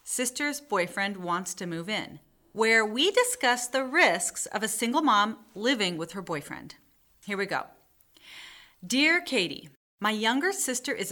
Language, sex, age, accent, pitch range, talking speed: English, female, 40-59, American, 180-250 Hz, 150 wpm